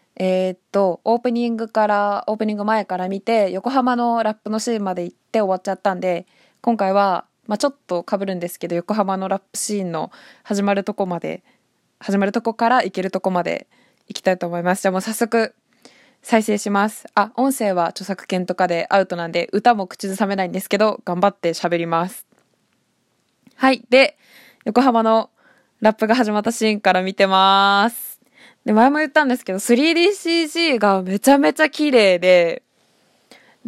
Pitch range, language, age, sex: 190-255 Hz, Japanese, 20-39, female